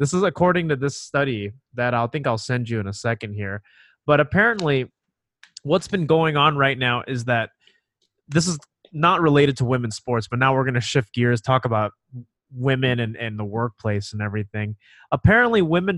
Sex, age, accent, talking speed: male, 30-49, American, 185 wpm